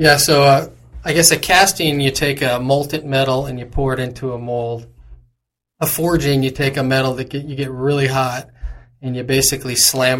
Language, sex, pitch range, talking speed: English, male, 125-135 Hz, 205 wpm